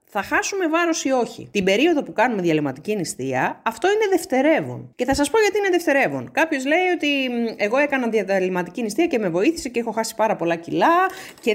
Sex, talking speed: female, 195 wpm